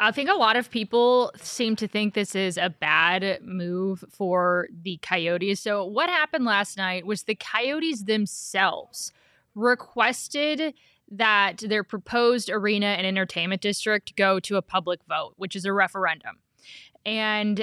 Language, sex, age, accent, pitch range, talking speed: English, female, 20-39, American, 180-210 Hz, 150 wpm